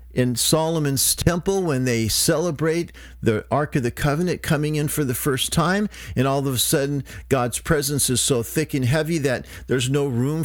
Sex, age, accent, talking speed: male, 50-69, American, 190 wpm